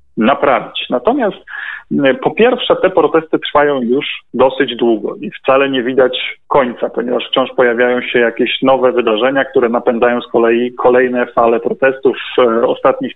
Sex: male